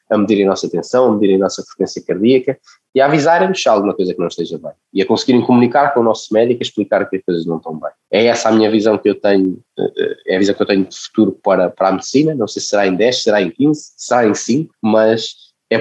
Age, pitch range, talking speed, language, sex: 20-39, 100-130 Hz, 265 wpm, Portuguese, male